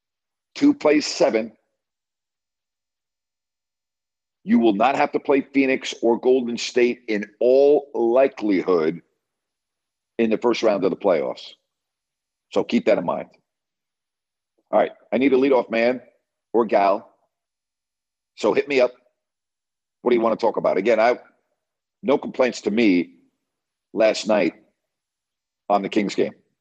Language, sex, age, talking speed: English, male, 50-69, 135 wpm